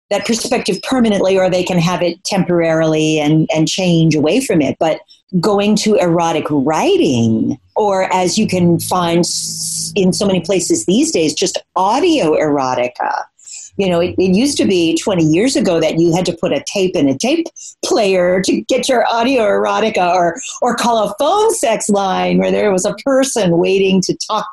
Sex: female